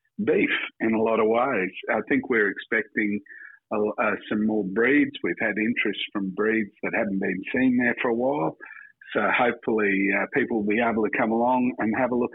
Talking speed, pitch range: 200 wpm, 105-125 Hz